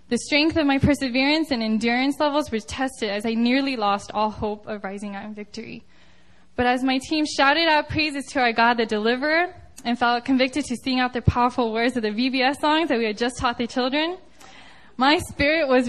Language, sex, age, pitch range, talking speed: English, female, 10-29, 225-295 Hz, 210 wpm